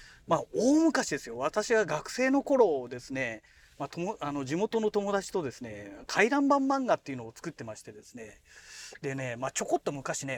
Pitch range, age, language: 130-200 Hz, 40-59, Japanese